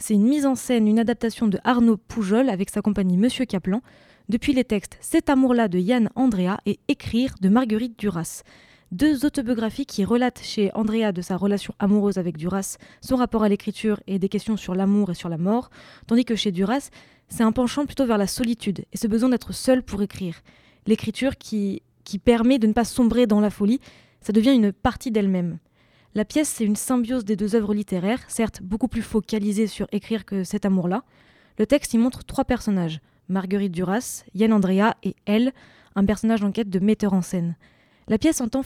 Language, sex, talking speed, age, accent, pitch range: French, female, 205 wpm, 20-39, French, 195-235 Hz